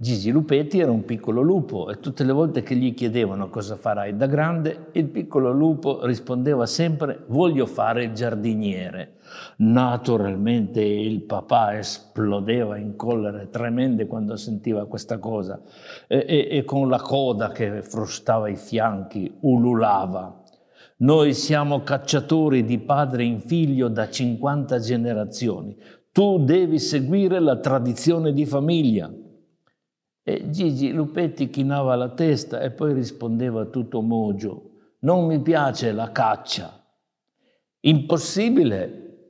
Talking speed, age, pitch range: 125 wpm, 60-79, 115-145 Hz